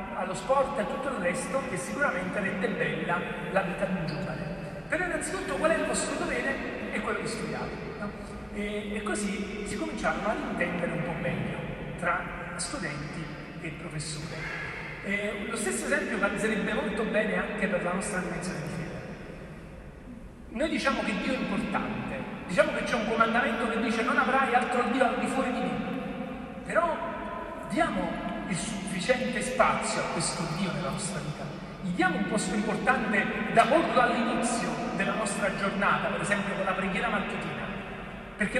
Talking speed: 165 wpm